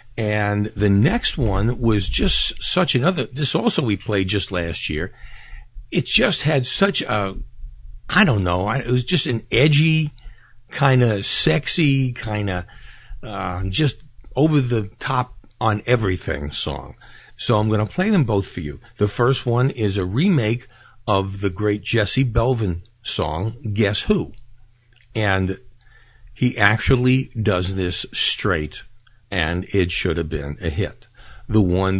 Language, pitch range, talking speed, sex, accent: English, 100-125 Hz, 140 wpm, male, American